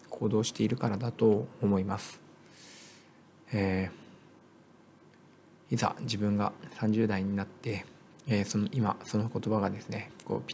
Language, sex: Japanese, male